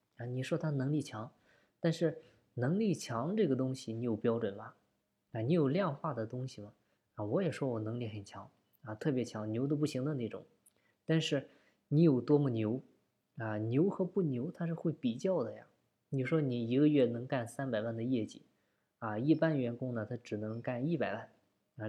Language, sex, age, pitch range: Chinese, female, 20-39, 115-155 Hz